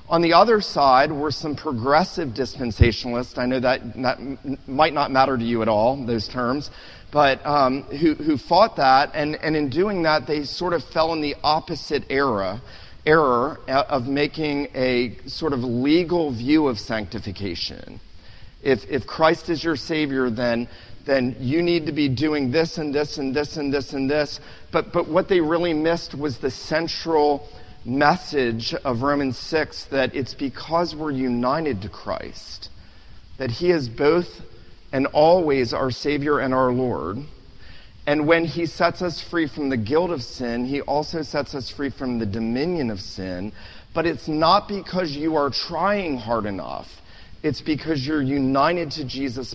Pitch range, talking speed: 120-155 Hz, 165 wpm